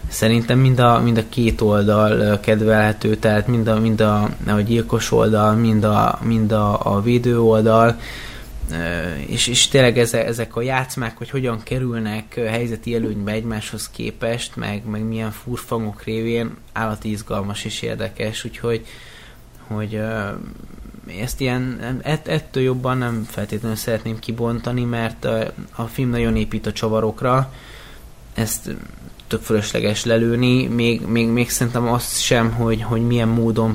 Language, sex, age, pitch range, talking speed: Hungarian, male, 20-39, 110-120 Hz, 135 wpm